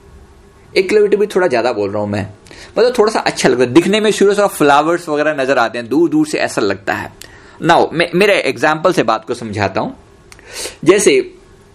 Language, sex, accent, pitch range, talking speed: Hindi, male, native, 115-185 Hz, 210 wpm